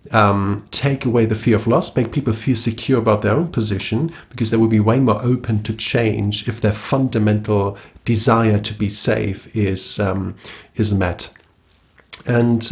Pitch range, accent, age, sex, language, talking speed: 105-120 Hz, German, 40-59, male, English, 170 wpm